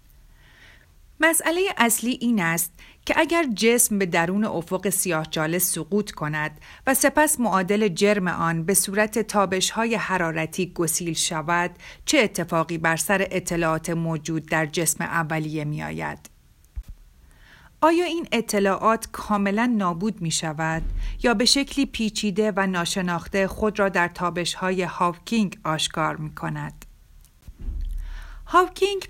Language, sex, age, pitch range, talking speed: Persian, female, 40-59, 165-215 Hz, 120 wpm